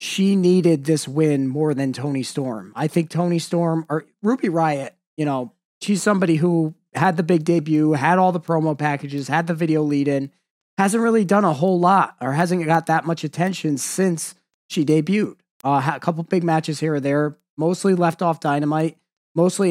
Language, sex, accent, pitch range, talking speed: English, male, American, 150-180 Hz, 190 wpm